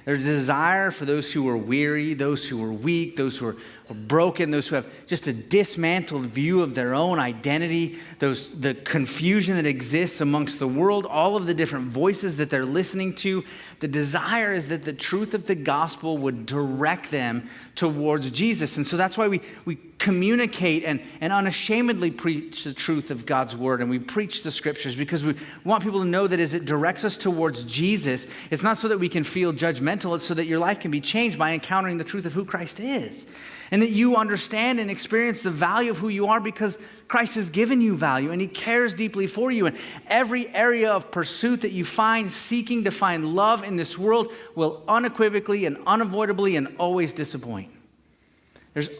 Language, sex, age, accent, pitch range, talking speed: English, male, 30-49, American, 140-200 Hz, 200 wpm